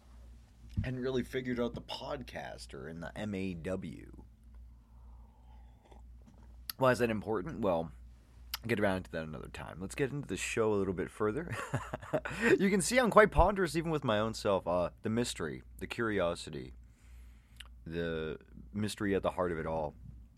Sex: male